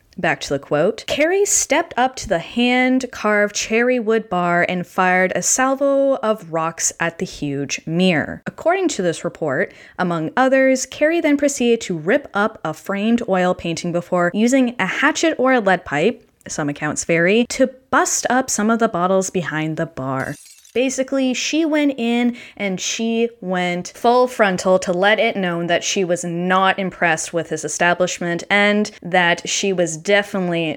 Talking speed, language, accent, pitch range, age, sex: 170 wpm, English, American, 175-245 Hz, 10-29, female